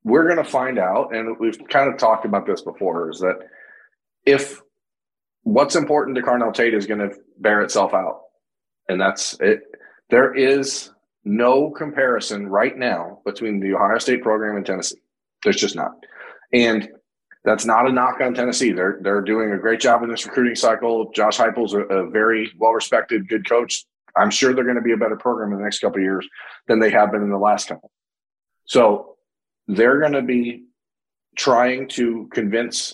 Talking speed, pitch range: 185 wpm, 105-130 Hz